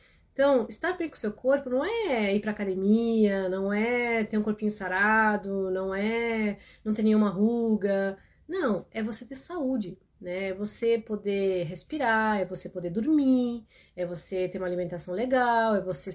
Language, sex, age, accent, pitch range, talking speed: Portuguese, female, 30-49, Brazilian, 180-225 Hz, 170 wpm